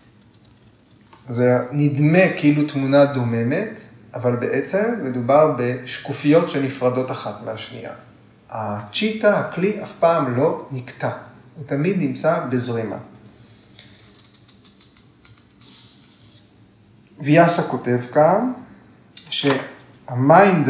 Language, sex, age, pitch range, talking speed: Hebrew, male, 30-49, 125-155 Hz, 75 wpm